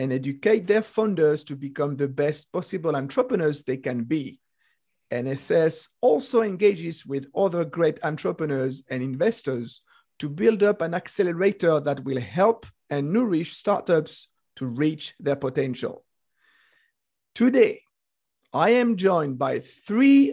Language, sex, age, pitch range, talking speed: English, male, 50-69, 150-215 Hz, 125 wpm